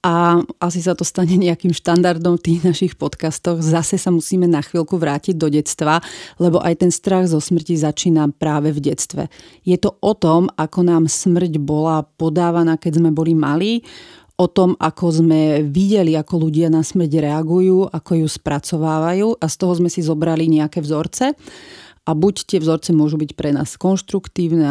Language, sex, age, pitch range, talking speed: Slovak, female, 30-49, 160-185 Hz, 175 wpm